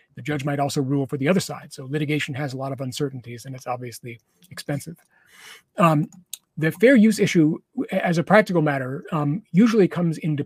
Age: 40-59